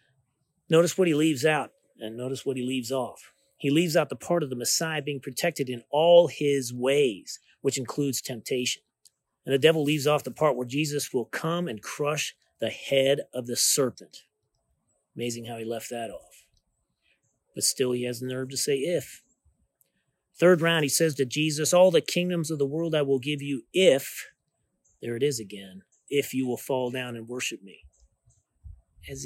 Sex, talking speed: male, 185 wpm